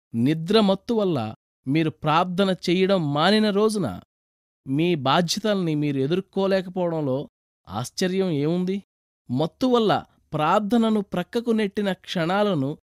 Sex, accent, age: male, native, 20-39